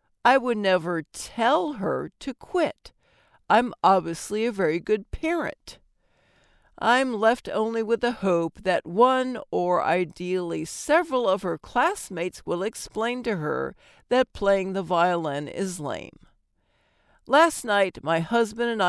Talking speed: 135 wpm